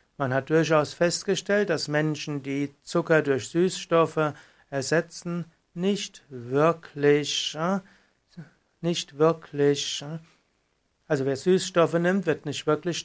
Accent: German